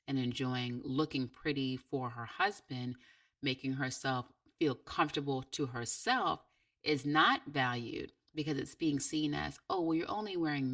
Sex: female